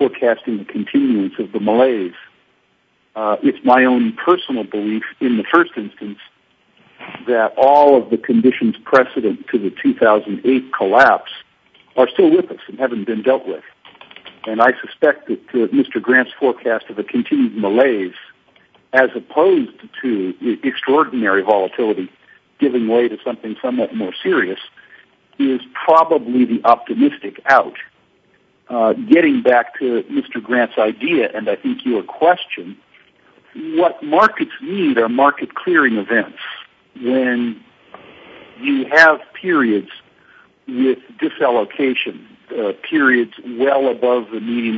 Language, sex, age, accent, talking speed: English, male, 60-79, American, 125 wpm